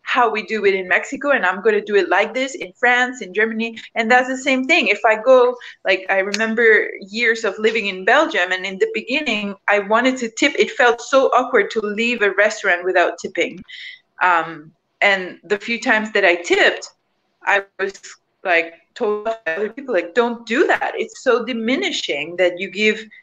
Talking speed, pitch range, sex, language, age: 195 wpm, 195-260 Hz, female, English, 30-49